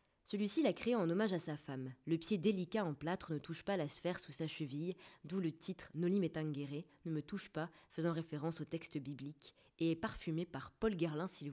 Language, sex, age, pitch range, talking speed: French, female, 20-39, 145-180 Hz, 235 wpm